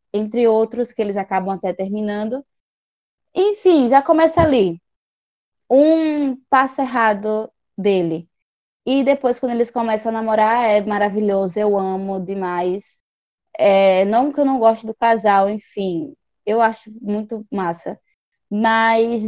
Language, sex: Portuguese, female